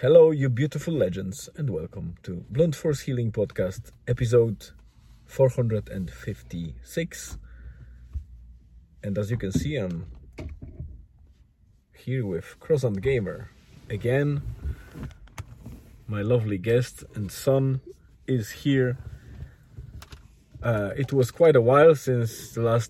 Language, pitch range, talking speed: English, 95-130 Hz, 100 wpm